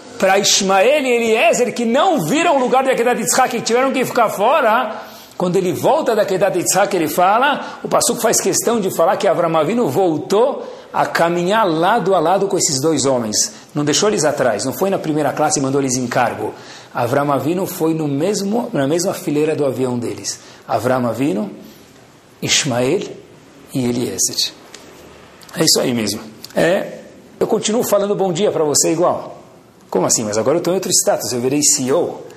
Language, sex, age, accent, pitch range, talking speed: Portuguese, male, 60-79, Brazilian, 135-215 Hz, 180 wpm